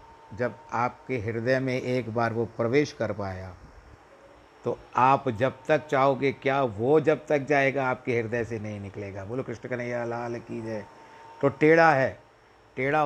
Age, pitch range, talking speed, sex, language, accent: 50-69, 115-140 Hz, 160 wpm, male, Hindi, native